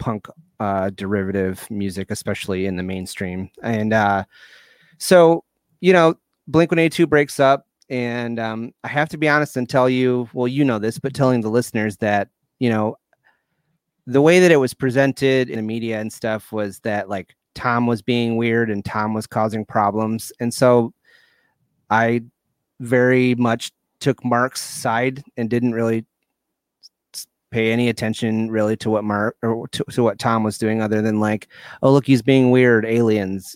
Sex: male